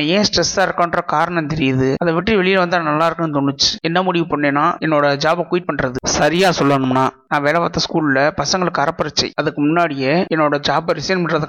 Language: Tamil